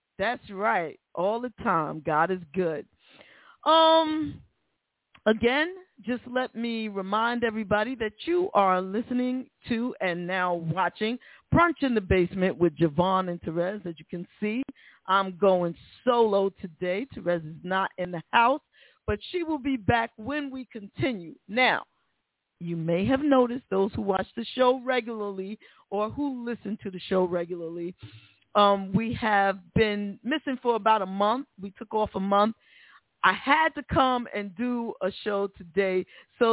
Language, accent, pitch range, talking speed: English, American, 185-245 Hz, 155 wpm